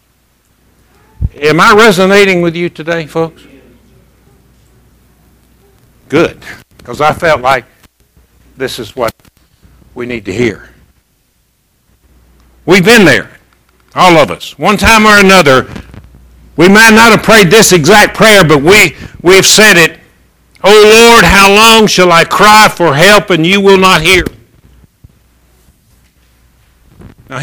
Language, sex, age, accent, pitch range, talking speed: English, male, 60-79, American, 135-200 Hz, 125 wpm